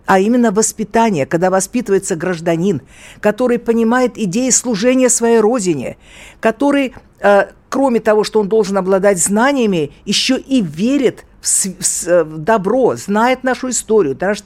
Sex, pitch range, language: female, 155-225 Hz, Russian